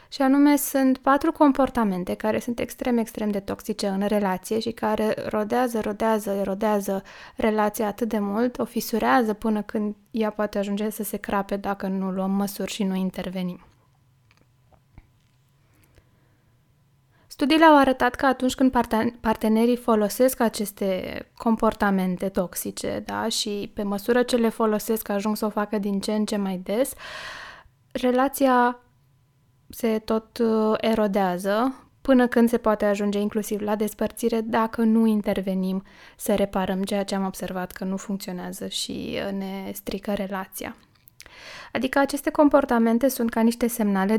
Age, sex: 20-39, female